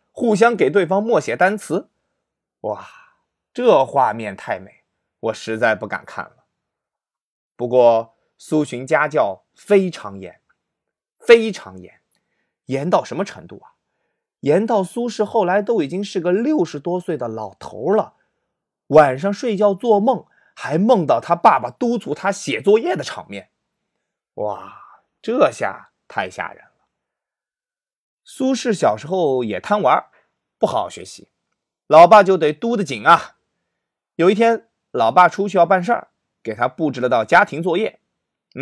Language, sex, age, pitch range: Chinese, male, 20-39, 150-220 Hz